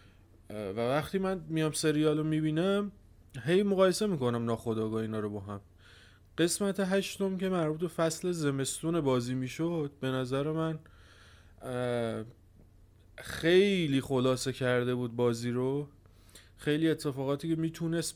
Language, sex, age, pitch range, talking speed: Persian, male, 30-49, 110-155 Hz, 120 wpm